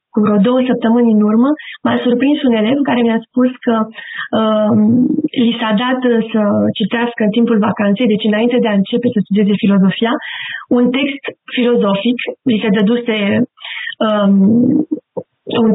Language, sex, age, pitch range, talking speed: Romanian, female, 20-39, 230-285 Hz, 150 wpm